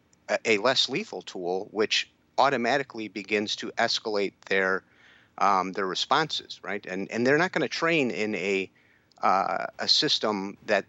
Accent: American